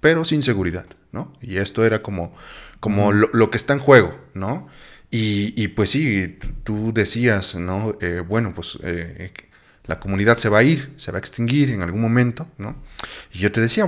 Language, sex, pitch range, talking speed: Spanish, male, 100-125 Hz, 195 wpm